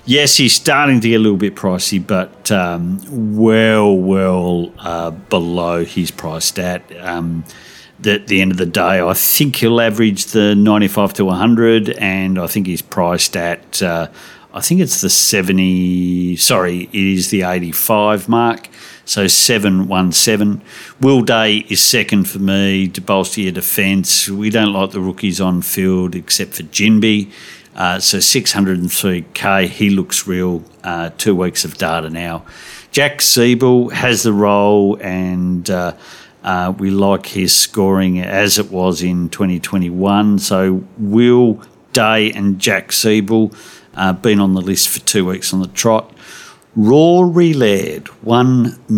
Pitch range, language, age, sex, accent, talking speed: 90-110 Hz, English, 50-69, male, Australian, 150 wpm